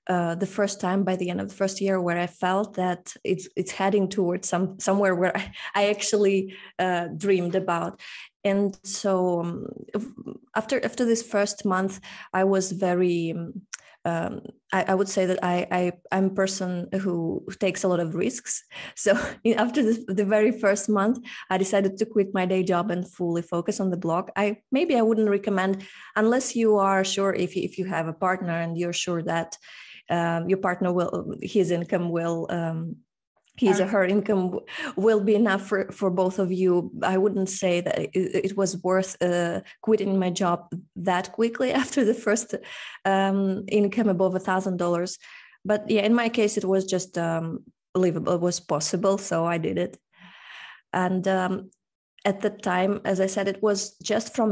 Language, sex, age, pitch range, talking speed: English, female, 20-39, 180-205 Hz, 185 wpm